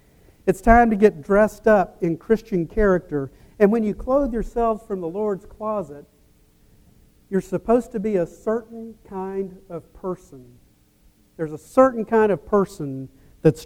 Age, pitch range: 50-69, 155-215 Hz